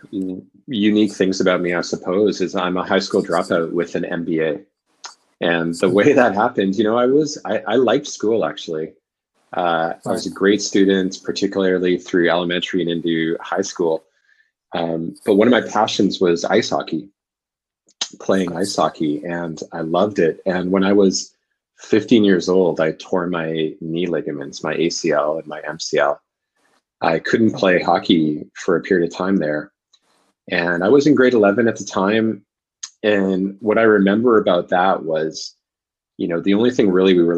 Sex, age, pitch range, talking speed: male, 30-49, 85-100 Hz, 175 wpm